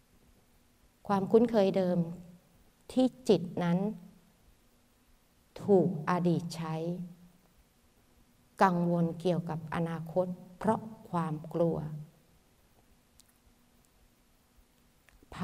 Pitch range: 165-210 Hz